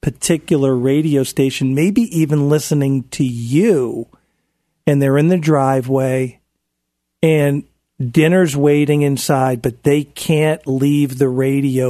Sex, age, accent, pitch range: male, 50-69, American, 130-155 Hz